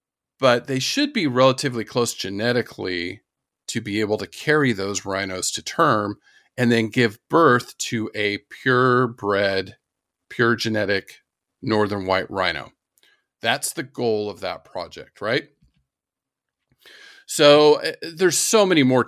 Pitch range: 105-135 Hz